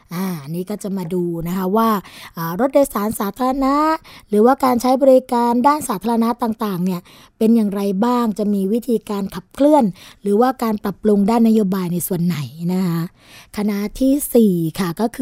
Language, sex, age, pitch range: Thai, female, 20-39, 195-240 Hz